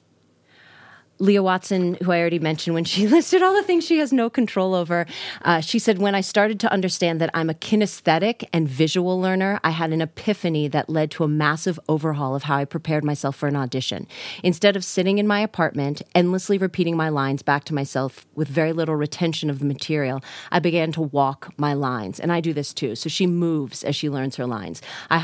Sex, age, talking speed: female, 30-49, 215 wpm